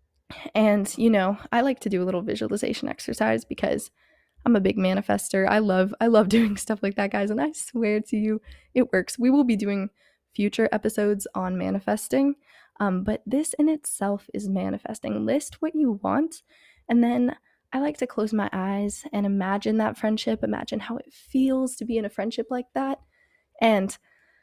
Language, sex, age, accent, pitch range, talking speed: English, female, 20-39, American, 195-240 Hz, 185 wpm